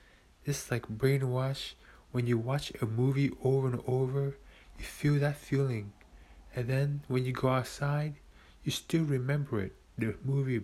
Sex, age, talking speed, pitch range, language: male, 20-39, 150 wpm, 105-135 Hz, English